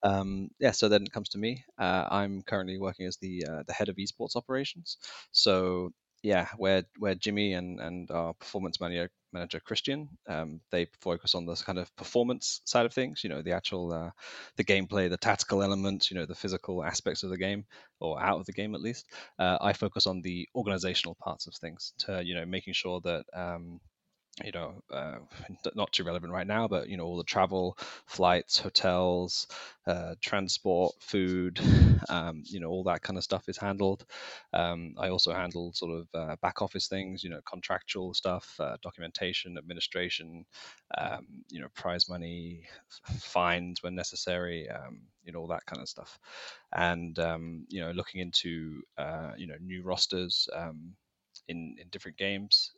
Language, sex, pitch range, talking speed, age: English, male, 85-95 Hz, 180 wpm, 20-39